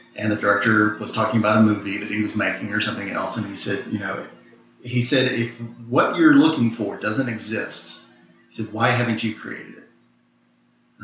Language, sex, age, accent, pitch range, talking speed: English, male, 30-49, American, 110-125 Hz, 200 wpm